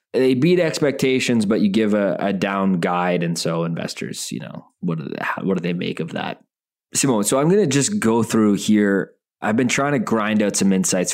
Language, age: English, 20-39